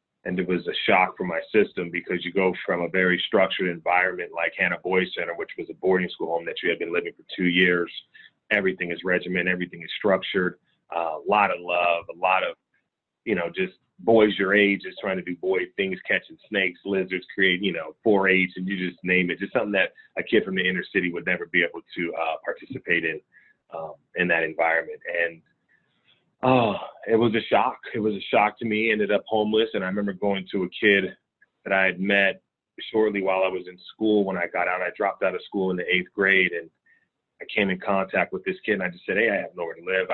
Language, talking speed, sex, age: English, 235 wpm, male, 30-49